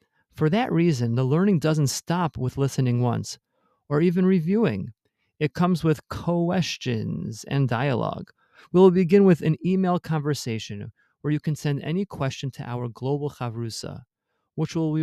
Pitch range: 120-155 Hz